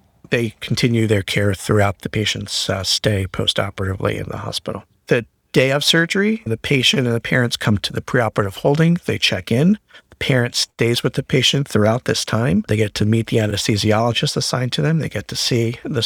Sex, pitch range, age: male, 105-130 Hz, 50-69